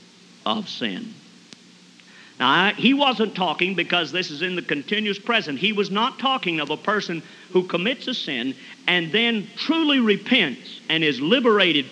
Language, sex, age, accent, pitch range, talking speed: English, male, 50-69, American, 155-245 Hz, 155 wpm